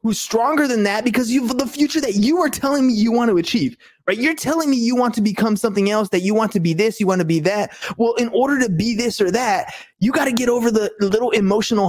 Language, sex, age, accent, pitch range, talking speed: English, male, 20-39, American, 195-250 Hz, 275 wpm